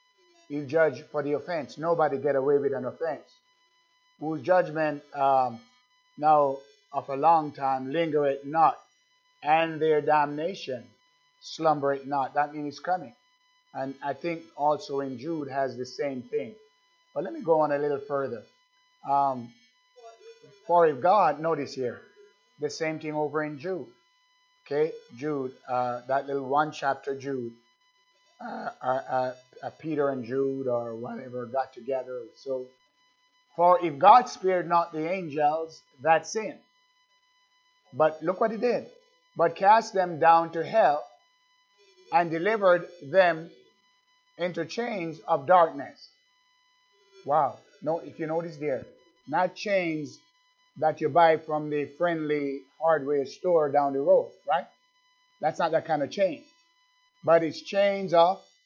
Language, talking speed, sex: English, 145 wpm, male